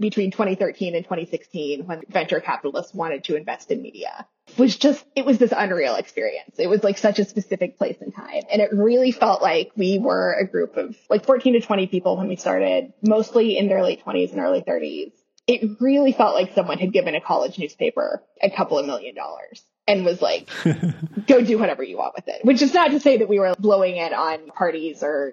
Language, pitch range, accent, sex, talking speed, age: English, 195-265 Hz, American, female, 220 wpm, 20-39